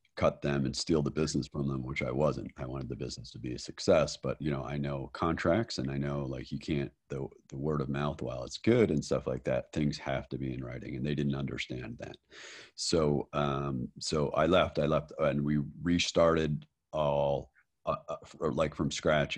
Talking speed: 215 wpm